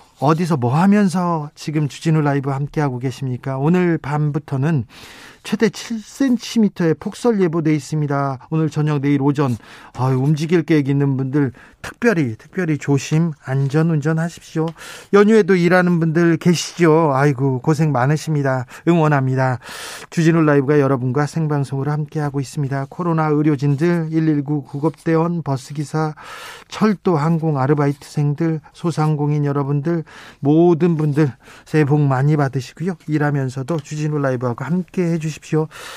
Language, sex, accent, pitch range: Korean, male, native, 140-170 Hz